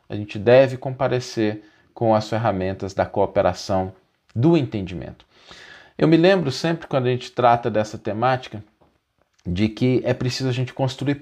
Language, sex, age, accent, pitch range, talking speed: Portuguese, male, 40-59, Brazilian, 110-150 Hz, 150 wpm